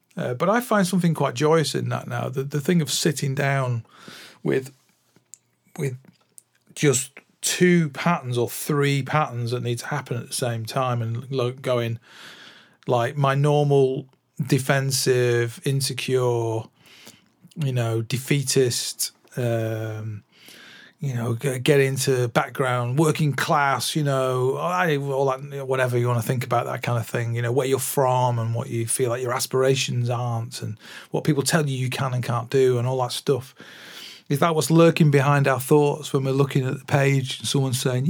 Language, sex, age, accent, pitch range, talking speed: English, male, 40-59, British, 125-145 Hz, 170 wpm